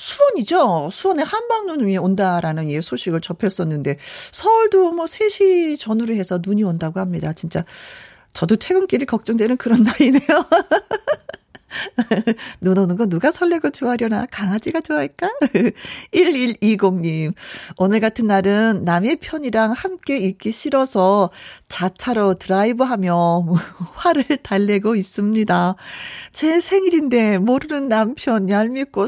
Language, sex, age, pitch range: Korean, female, 40-59, 190-285 Hz